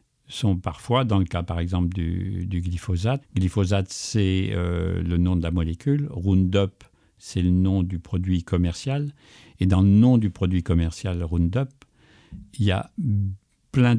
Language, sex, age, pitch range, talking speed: French, male, 60-79, 90-110 Hz, 160 wpm